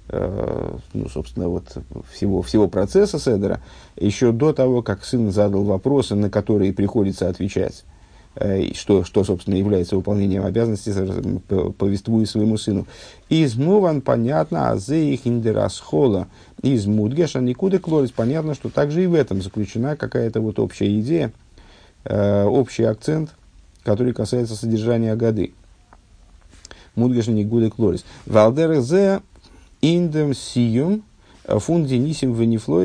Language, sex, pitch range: Russian, male, 100-130 Hz